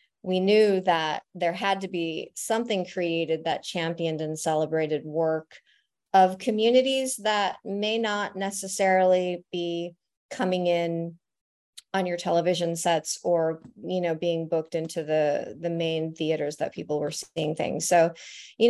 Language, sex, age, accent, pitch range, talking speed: English, female, 30-49, American, 165-195 Hz, 140 wpm